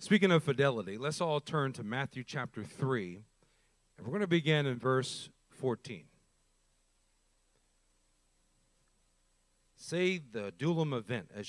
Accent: American